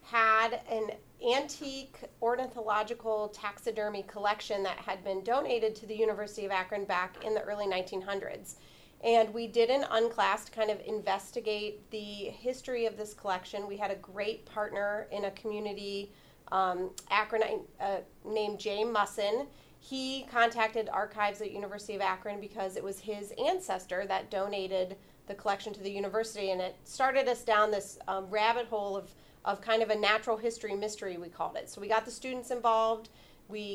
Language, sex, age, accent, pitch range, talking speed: English, female, 30-49, American, 195-220 Hz, 165 wpm